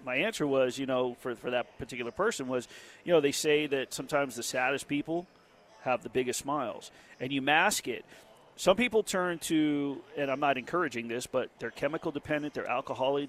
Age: 40-59